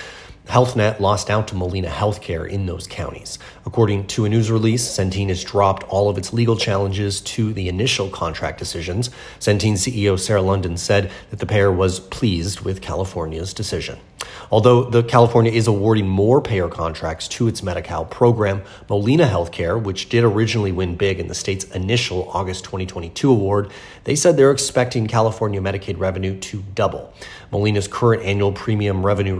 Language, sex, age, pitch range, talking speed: English, male, 30-49, 95-110 Hz, 165 wpm